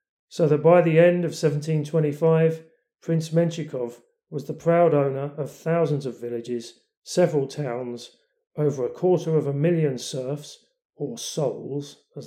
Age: 40-59